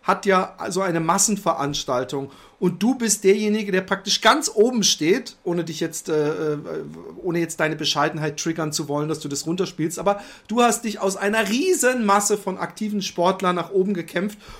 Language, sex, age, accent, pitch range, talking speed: German, male, 40-59, German, 160-210 Hz, 175 wpm